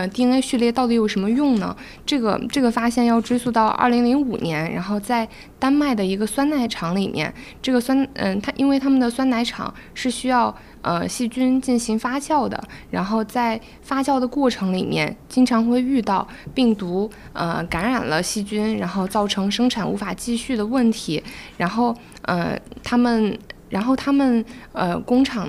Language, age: Chinese, 20-39